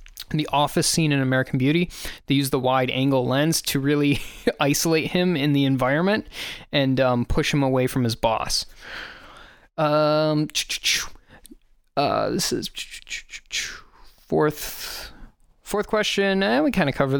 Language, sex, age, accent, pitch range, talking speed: English, male, 20-39, American, 130-165 Hz, 135 wpm